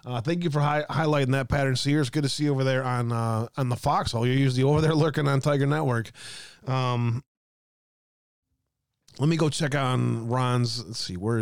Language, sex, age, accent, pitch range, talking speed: English, male, 20-39, American, 120-150 Hz, 205 wpm